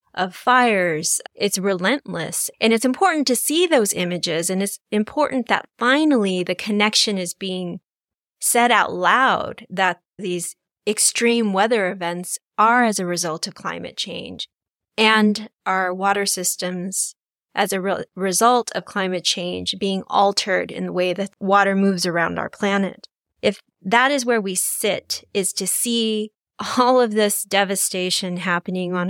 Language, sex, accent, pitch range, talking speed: English, female, American, 190-235 Hz, 145 wpm